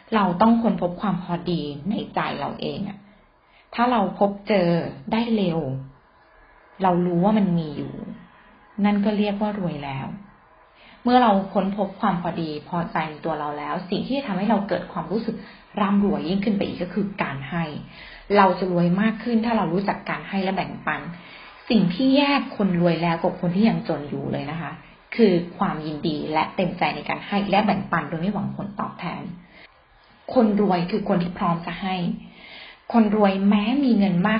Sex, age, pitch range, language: female, 30-49, 175-215 Hz, Thai